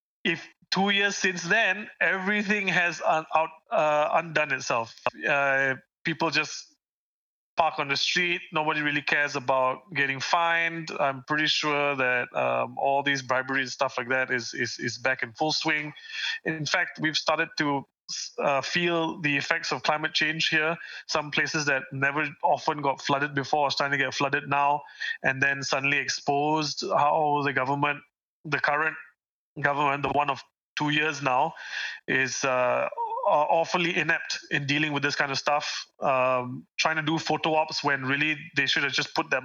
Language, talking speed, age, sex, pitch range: English, 170 wpm, 20-39, male, 135-160 Hz